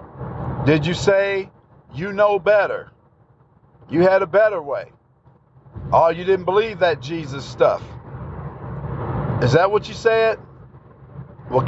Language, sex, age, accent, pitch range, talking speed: English, male, 50-69, American, 135-185 Hz, 125 wpm